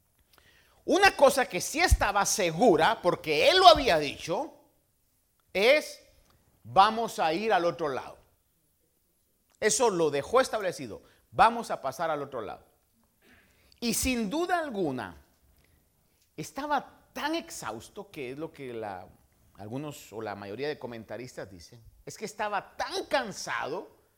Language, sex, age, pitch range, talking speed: Spanish, male, 50-69, 145-240 Hz, 125 wpm